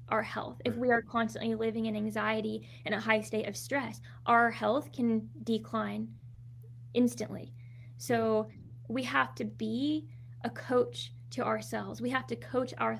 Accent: American